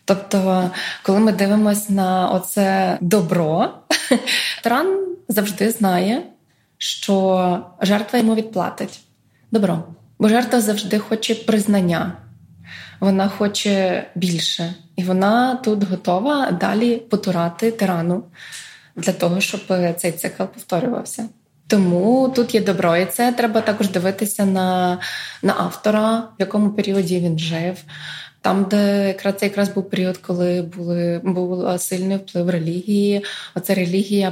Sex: female